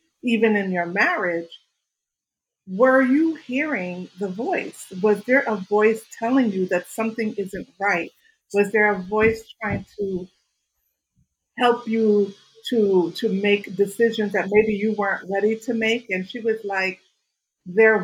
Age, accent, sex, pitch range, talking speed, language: 50-69, American, female, 190-230 Hz, 145 wpm, English